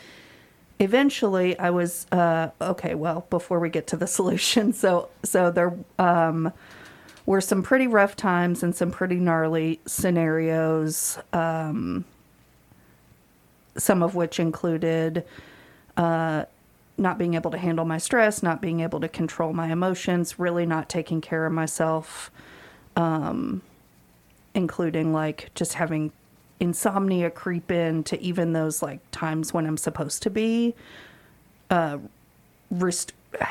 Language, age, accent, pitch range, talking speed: English, 40-59, American, 160-185 Hz, 130 wpm